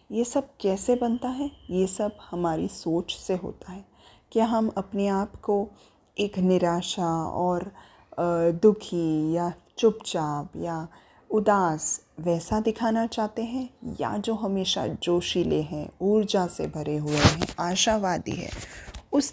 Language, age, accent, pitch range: Hindi, 20-39, native, 170-220 Hz